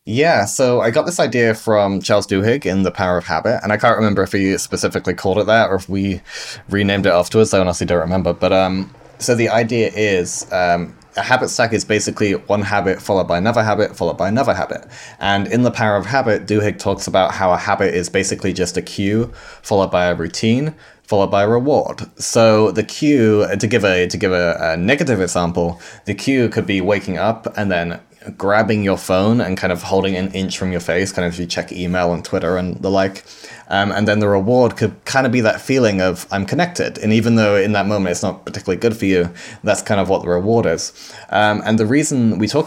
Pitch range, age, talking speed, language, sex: 95-110 Hz, 20-39, 230 wpm, English, male